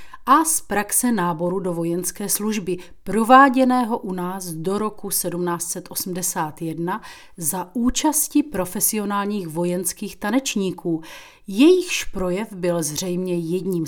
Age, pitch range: 30-49, 180-225 Hz